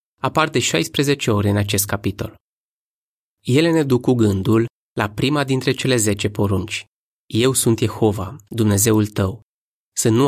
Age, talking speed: 20-39, 145 wpm